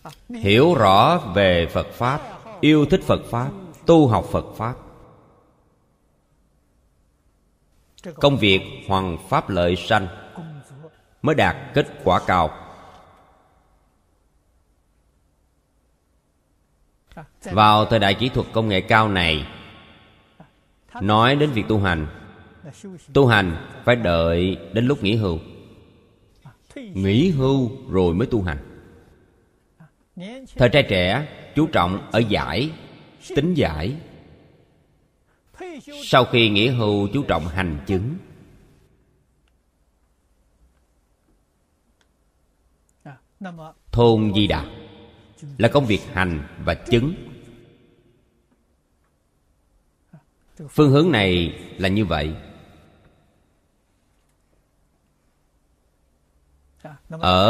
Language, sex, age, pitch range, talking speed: Vietnamese, male, 30-49, 75-120 Hz, 90 wpm